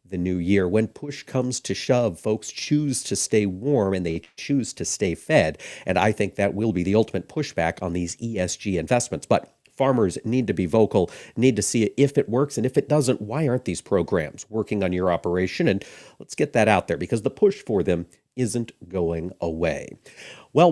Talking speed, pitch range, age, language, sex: 205 wpm, 105-130 Hz, 50-69, English, male